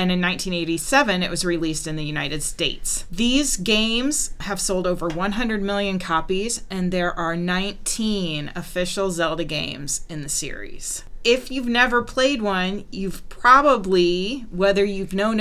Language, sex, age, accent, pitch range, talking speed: English, female, 30-49, American, 175-210 Hz, 150 wpm